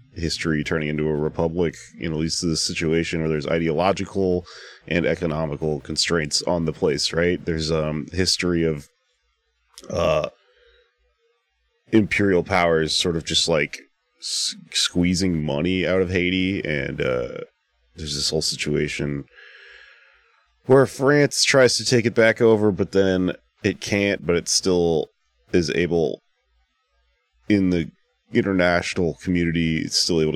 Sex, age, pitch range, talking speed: male, 30-49, 80-100 Hz, 135 wpm